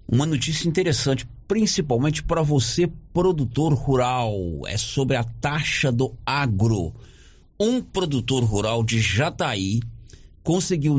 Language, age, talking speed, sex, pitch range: Portuguese, 50-69, 110 wpm, male, 110-150 Hz